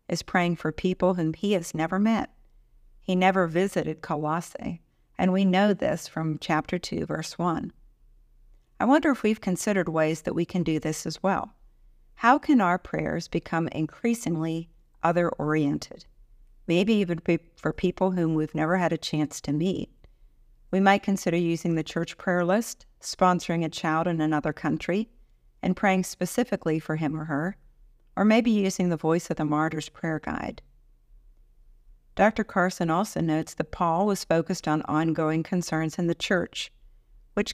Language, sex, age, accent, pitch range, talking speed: English, female, 50-69, American, 155-190 Hz, 160 wpm